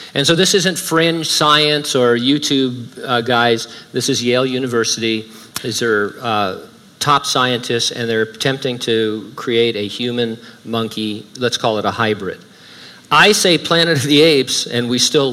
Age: 50-69